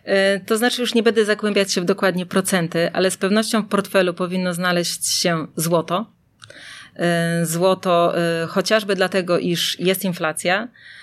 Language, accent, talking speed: Polish, native, 135 wpm